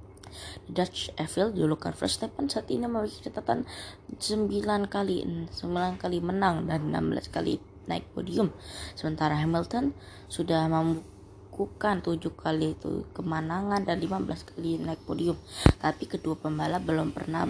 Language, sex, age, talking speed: Indonesian, female, 20-39, 125 wpm